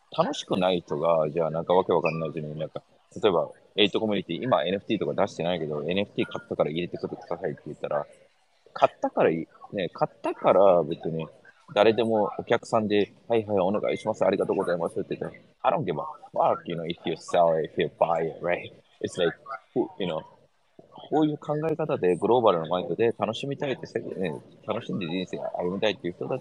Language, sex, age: Japanese, male, 20-39